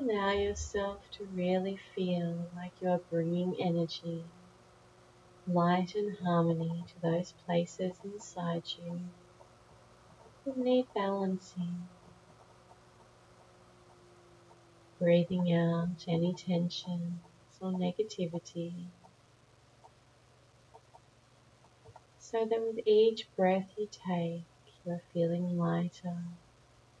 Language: English